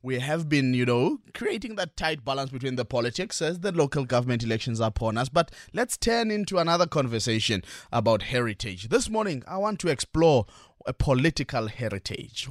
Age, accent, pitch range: 20-39, South African, 110-140 Hz